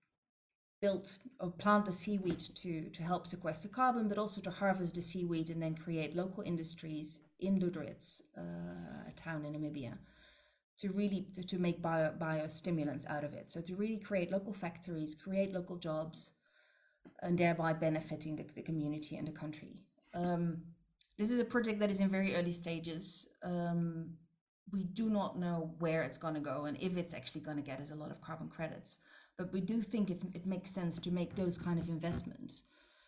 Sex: female